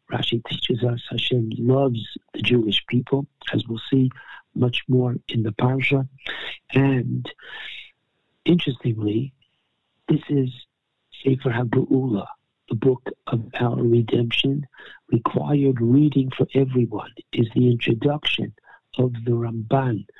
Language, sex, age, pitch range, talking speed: English, male, 60-79, 120-135 Hz, 110 wpm